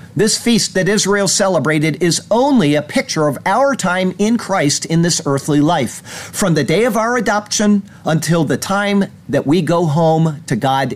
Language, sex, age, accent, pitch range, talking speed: English, male, 50-69, American, 155-205 Hz, 180 wpm